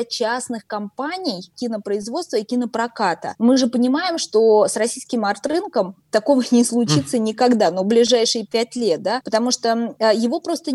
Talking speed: 140 wpm